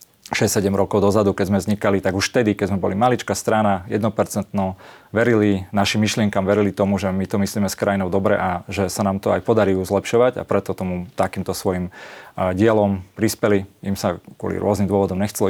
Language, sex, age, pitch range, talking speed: Slovak, male, 30-49, 95-110 Hz, 185 wpm